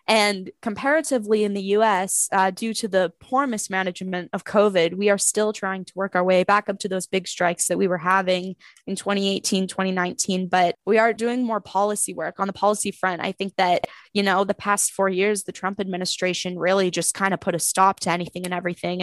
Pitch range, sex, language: 180-200 Hz, female, English